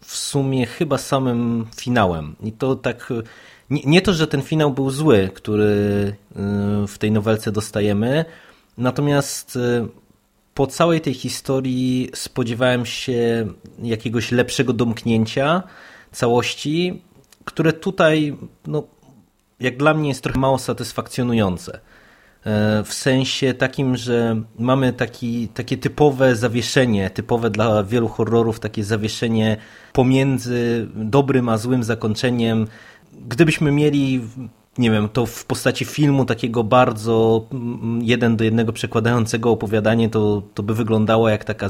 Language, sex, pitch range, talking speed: Polish, male, 110-130 Hz, 115 wpm